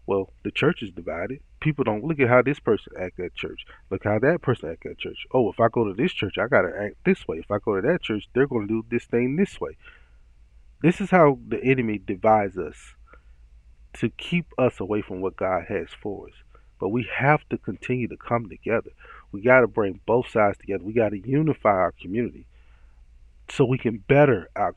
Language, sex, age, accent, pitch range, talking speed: English, male, 30-49, American, 100-135 Hz, 225 wpm